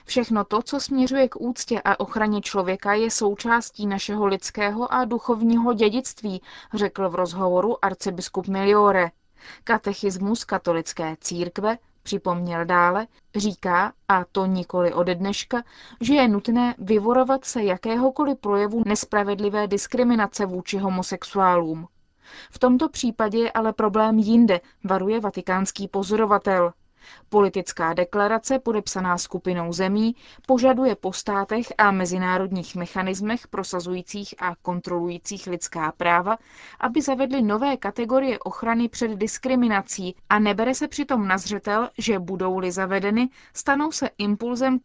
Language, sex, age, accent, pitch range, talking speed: Czech, female, 20-39, native, 185-230 Hz, 115 wpm